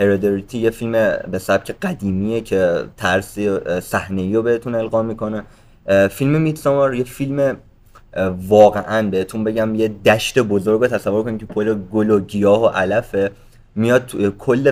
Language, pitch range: Persian, 95-115 Hz